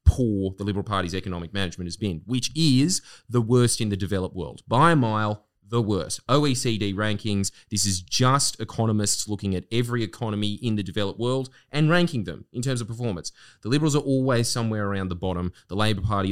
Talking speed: 195 wpm